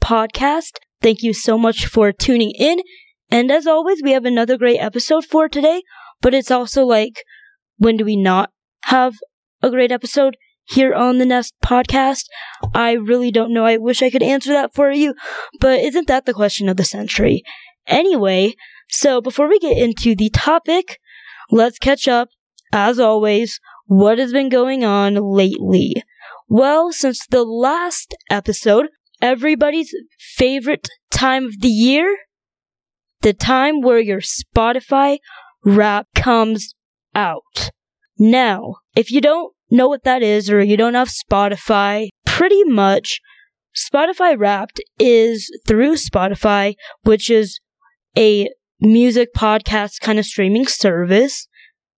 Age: 20-39